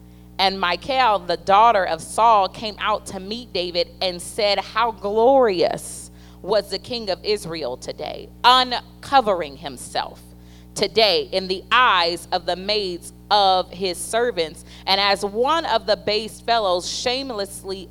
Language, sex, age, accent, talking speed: English, female, 30-49, American, 135 wpm